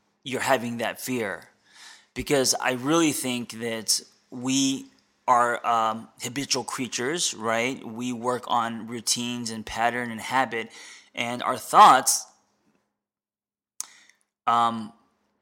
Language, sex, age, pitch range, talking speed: English, male, 20-39, 115-135 Hz, 105 wpm